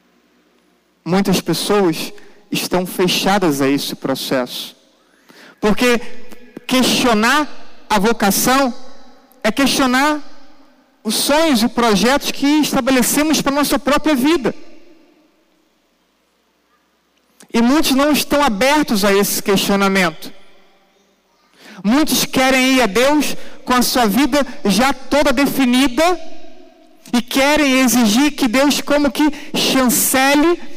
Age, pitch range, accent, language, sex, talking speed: 40-59, 215-280 Hz, Brazilian, Portuguese, male, 100 wpm